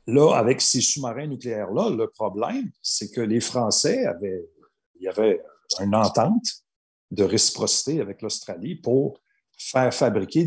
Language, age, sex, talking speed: French, 50-69, male, 140 wpm